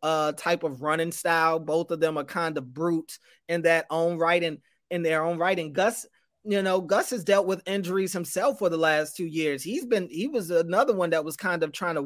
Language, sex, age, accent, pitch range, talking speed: English, male, 30-49, American, 155-190 Hz, 240 wpm